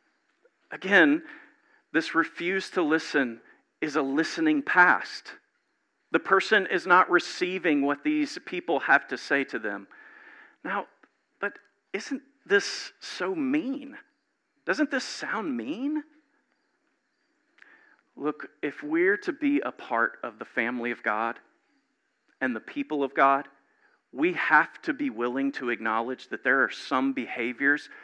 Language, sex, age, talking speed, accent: English, male, 50-69, 130 wpm, American